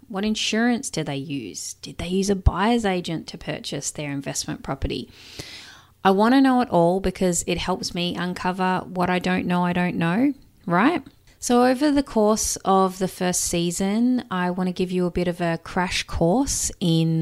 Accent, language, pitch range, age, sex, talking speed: Australian, English, 160-205 Hz, 20-39, female, 190 wpm